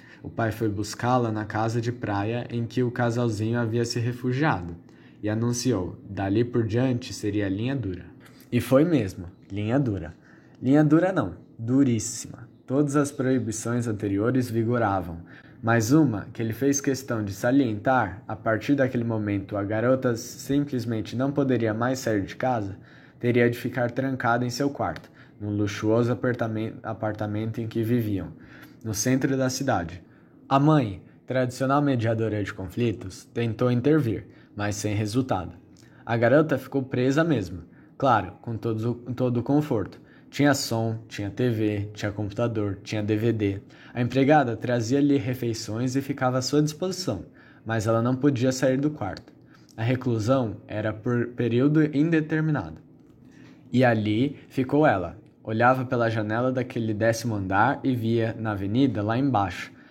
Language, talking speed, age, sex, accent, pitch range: Portuguese, 140 wpm, 10-29, male, Brazilian, 110-130 Hz